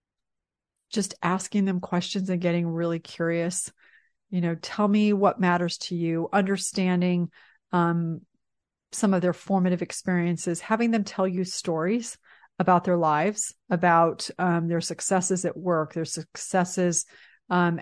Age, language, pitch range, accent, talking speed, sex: 30-49, English, 170-190 Hz, American, 135 wpm, female